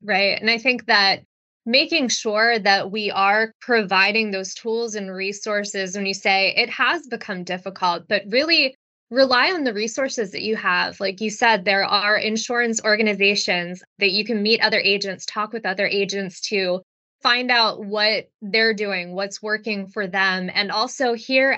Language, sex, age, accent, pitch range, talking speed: English, female, 20-39, American, 200-235 Hz, 170 wpm